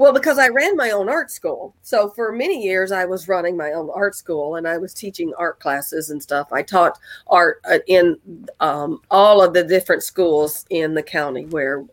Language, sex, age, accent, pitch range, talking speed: English, female, 40-59, American, 155-195 Hz, 205 wpm